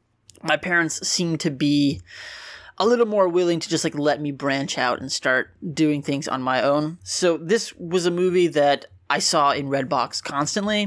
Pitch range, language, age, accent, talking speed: 140-175 Hz, English, 20-39, American, 190 wpm